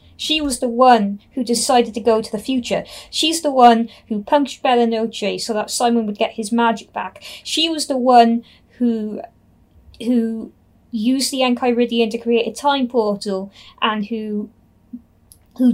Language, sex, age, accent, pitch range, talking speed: English, female, 20-39, British, 225-260 Hz, 160 wpm